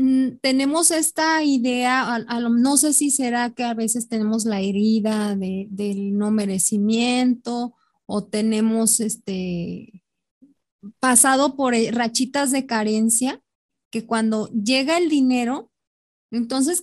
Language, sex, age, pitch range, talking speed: Spanish, female, 20-39, 225-290 Hz, 110 wpm